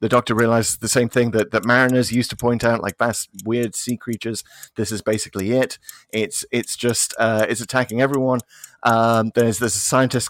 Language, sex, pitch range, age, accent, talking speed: English, male, 105-130 Hz, 30-49, British, 200 wpm